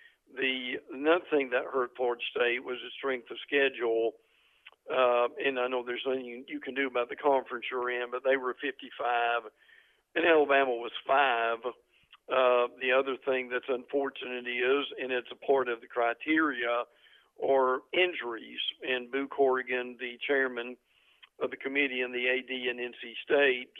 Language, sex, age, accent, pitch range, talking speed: English, male, 50-69, American, 125-145 Hz, 160 wpm